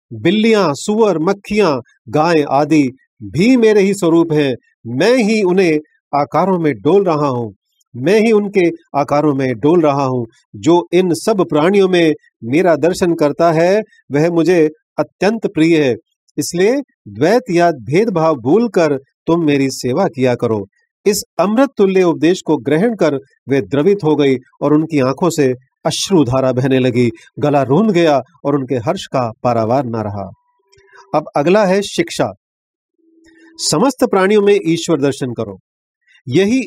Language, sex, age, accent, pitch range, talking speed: Hindi, male, 40-59, native, 145-200 Hz, 150 wpm